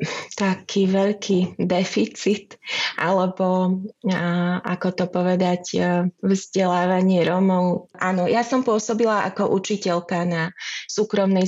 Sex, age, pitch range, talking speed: female, 20-39, 180-200 Hz, 95 wpm